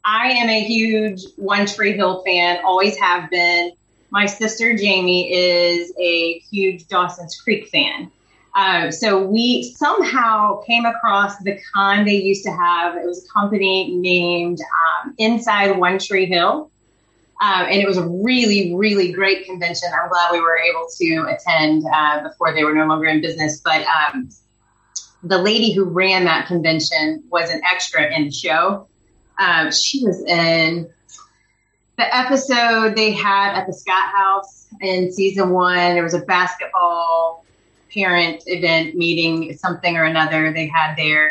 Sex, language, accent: female, English, American